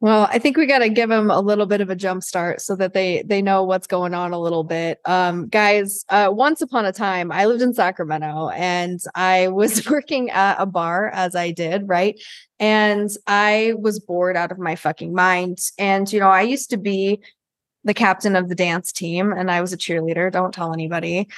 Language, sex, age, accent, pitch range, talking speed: English, female, 20-39, American, 185-225 Hz, 215 wpm